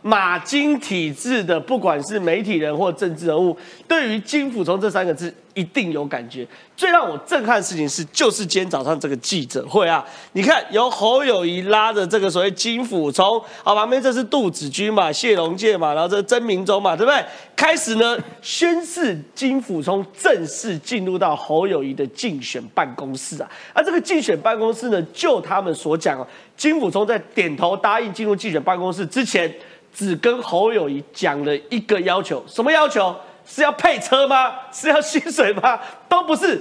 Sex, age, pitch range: male, 30-49, 180-280 Hz